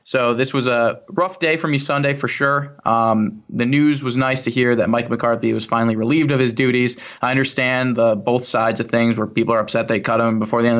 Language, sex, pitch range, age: English, male, 115-130 Hz, 20-39